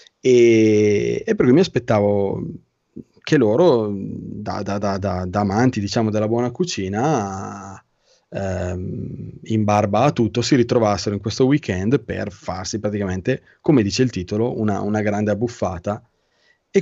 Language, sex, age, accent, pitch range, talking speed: Italian, male, 30-49, native, 100-120 Hz, 145 wpm